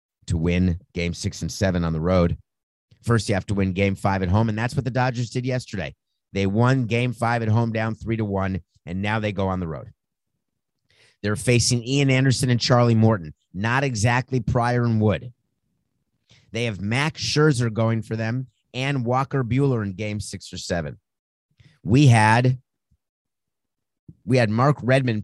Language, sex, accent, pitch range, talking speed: English, male, American, 100-130 Hz, 180 wpm